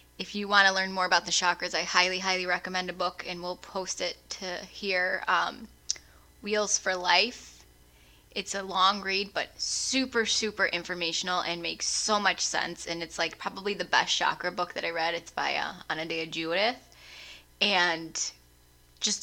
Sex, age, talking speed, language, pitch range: female, 10-29, 175 wpm, English, 170-200 Hz